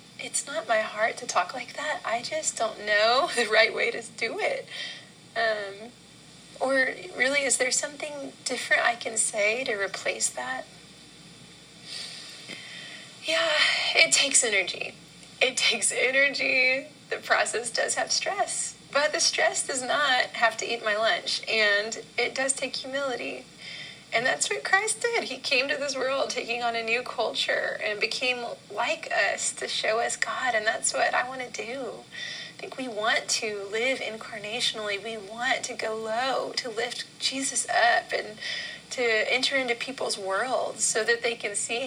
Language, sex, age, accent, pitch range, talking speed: English, female, 30-49, American, 225-310 Hz, 165 wpm